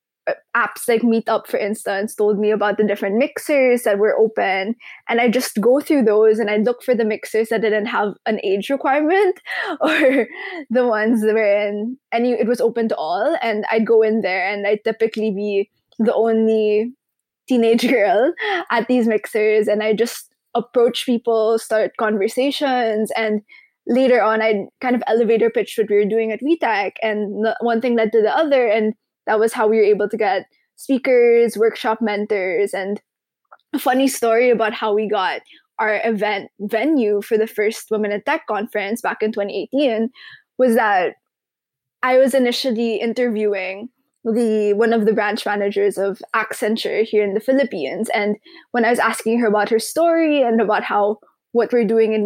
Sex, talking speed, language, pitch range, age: female, 175 wpm, English, 215-245 Hz, 20-39